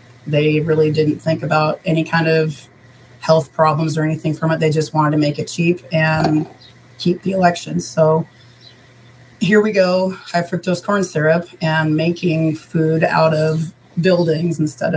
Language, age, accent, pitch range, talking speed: English, 30-49, American, 150-170 Hz, 160 wpm